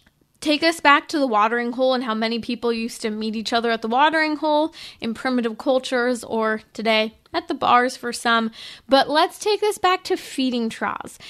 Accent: American